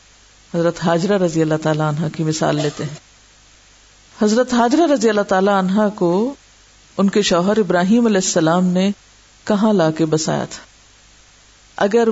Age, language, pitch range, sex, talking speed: 50-69, Urdu, 165-215 Hz, female, 145 wpm